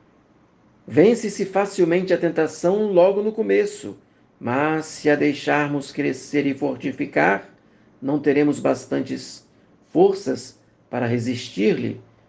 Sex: male